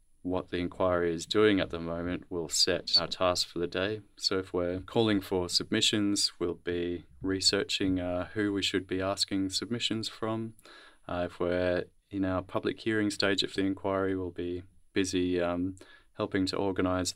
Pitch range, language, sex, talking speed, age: 90-100 Hz, English, male, 175 wpm, 20-39